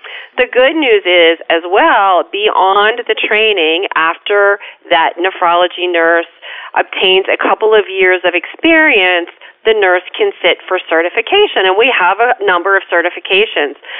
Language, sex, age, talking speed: English, female, 40-59, 140 wpm